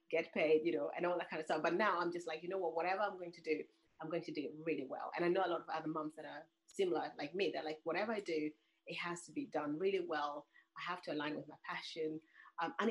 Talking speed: 295 wpm